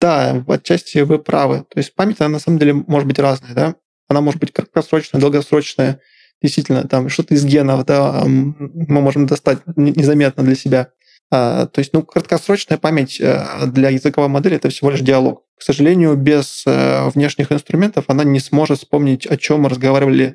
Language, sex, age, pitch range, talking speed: Russian, male, 20-39, 130-150 Hz, 170 wpm